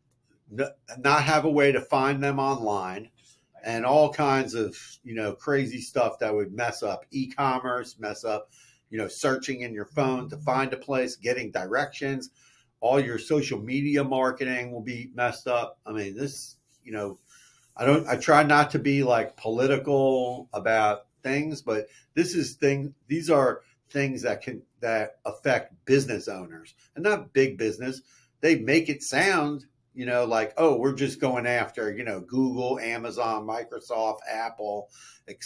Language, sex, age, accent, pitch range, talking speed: English, male, 50-69, American, 120-140 Hz, 160 wpm